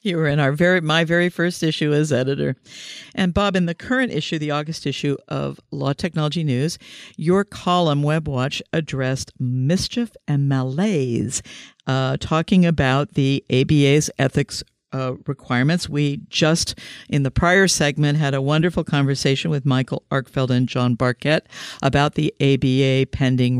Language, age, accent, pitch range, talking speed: English, 50-69, American, 135-170 Hz, 155 wpm